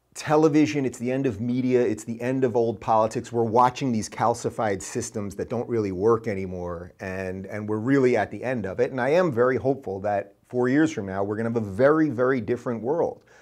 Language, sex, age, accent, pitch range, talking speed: English, male, 30-49, American, 110-140 Hz, 220 wpm